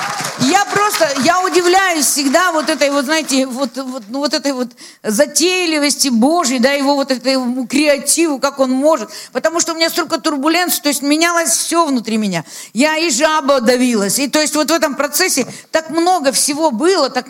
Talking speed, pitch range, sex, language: 180 wpm, 230-295 Hz, female, Russian